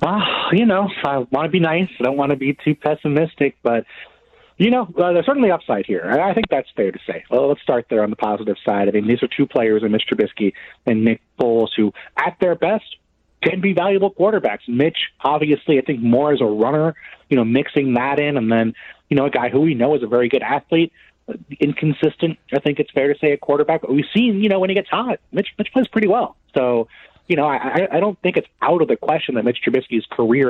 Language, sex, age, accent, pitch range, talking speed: English, male, 30-49, American, 120-155 Hz, 240 wpm